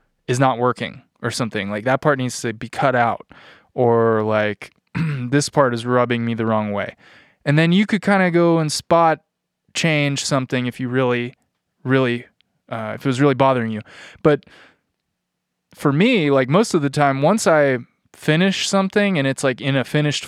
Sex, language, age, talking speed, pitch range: male, English, 20-39, 185 wpm, 115-145 Hz